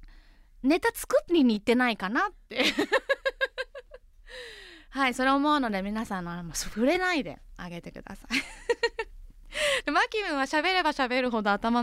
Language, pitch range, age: Japanese, 200-315 Hz, 20-39